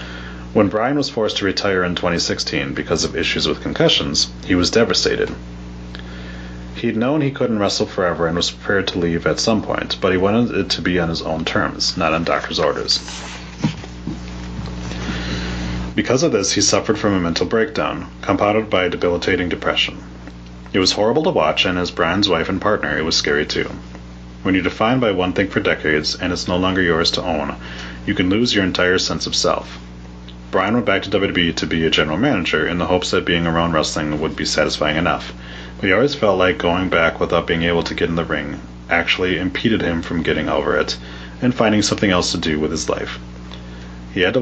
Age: 30-49